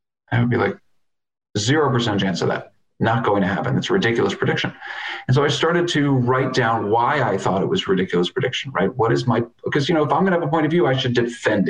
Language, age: English, 40-59